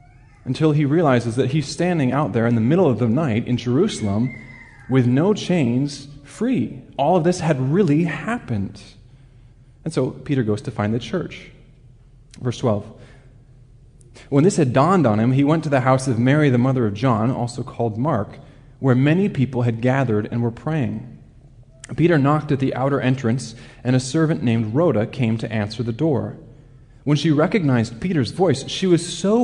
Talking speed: 180 wpm